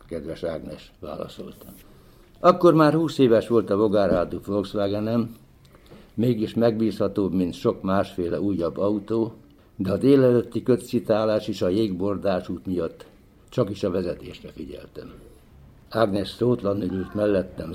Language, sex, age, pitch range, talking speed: Hungarian, male, 60-79, 95-115 Hz, 120 wpm